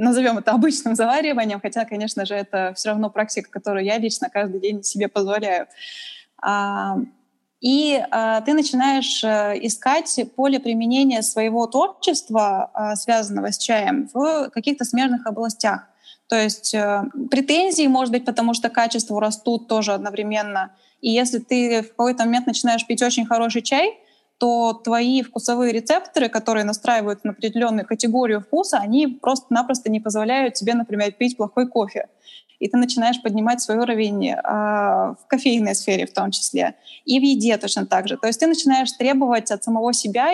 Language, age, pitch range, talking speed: Russian, 20-39, 215-260 Hz, 150 wpm